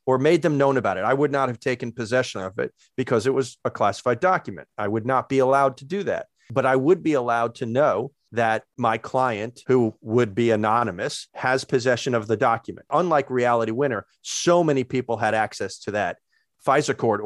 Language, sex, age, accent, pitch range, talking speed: English, male, 40-59, American, 110-140 Hz, 205 wpm